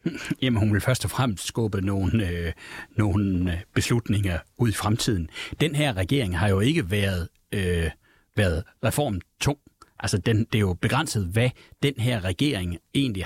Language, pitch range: Danish, 95-125 Hz